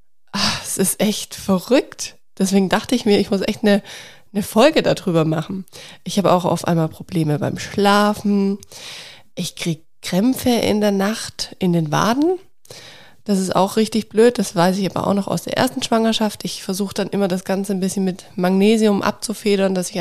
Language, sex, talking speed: German, female, 185 wpm